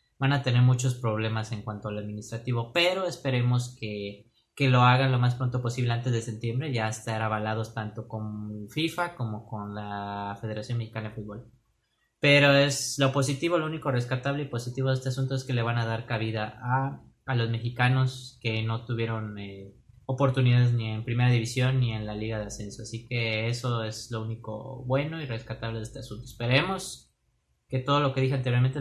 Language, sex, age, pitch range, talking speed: Spanish, male, 20-39, 110-130 Hz, 190 wpm